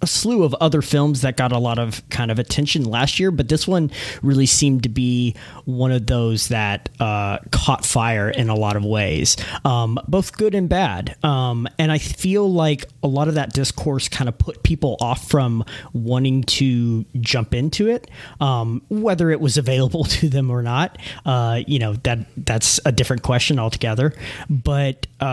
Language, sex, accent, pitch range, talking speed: English, male, American, 115-145 Hz, 185 wpm